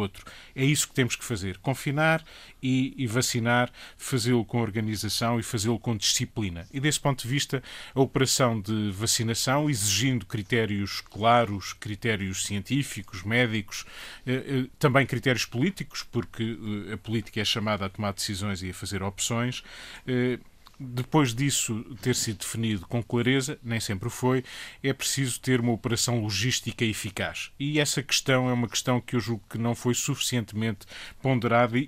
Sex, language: male, Portuguese